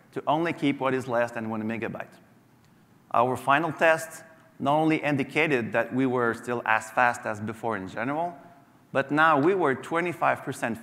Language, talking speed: English, 165 wpm